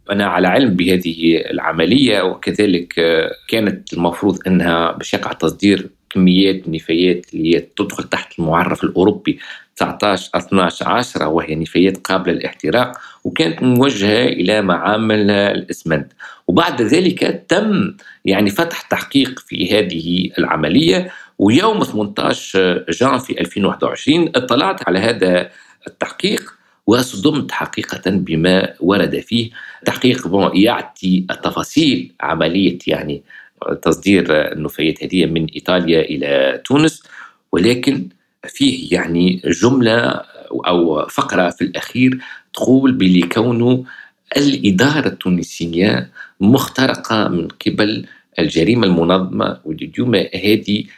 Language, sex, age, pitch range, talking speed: Arabic, male, 50-69, 90-115 Hz, 100 wpm